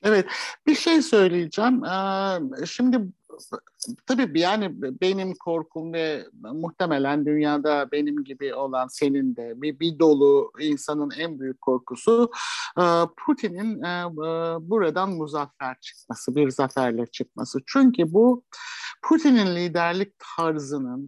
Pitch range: 135-195 Hz